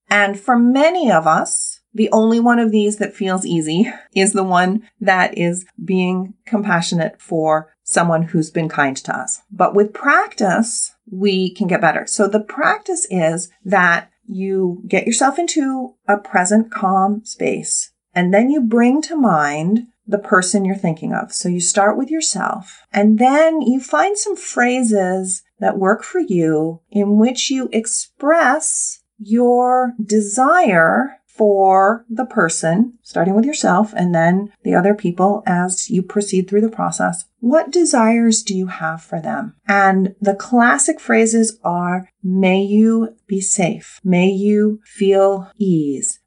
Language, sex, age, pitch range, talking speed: English, female, 40-59, 185-235 Hz, 150 wpm